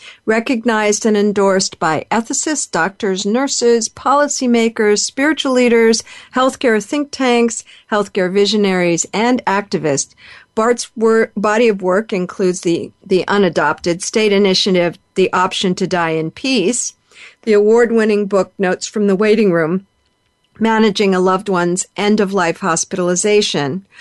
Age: 50-69